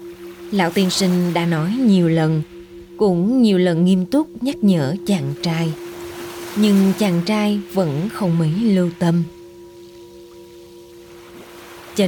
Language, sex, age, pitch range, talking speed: Vietnamese, female, 20-39, 175-230 Hz, 125 wpm